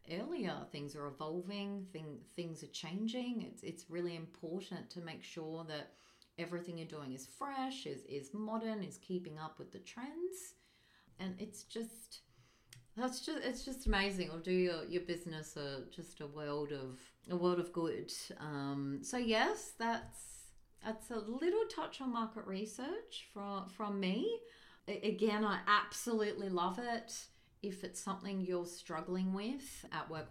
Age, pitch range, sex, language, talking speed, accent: 30-49, 140-200 Hz, female, English, 155 wpm, Australian